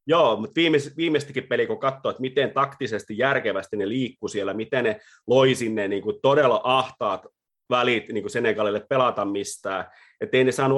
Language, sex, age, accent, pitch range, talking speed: Finnish, male, 30-49, native, 105-140 Hz, 165 wpm